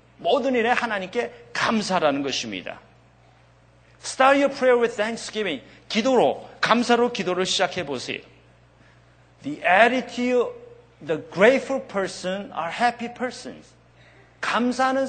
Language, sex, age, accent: Korean, male, 40-59, native